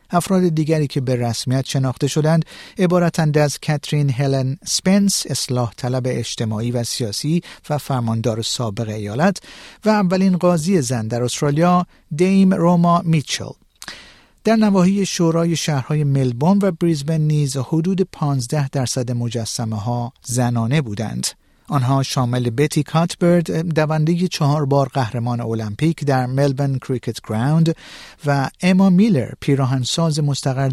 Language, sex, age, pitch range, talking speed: Persian, male, 50-69, 120-165 Hz, 125 wpm